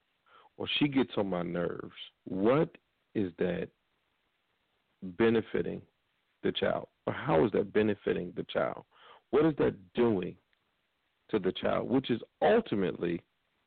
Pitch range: 90-120 Hz